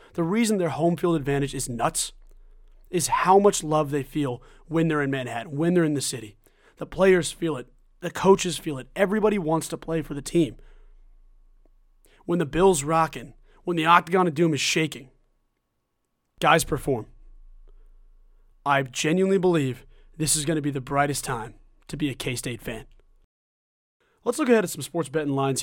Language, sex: English, male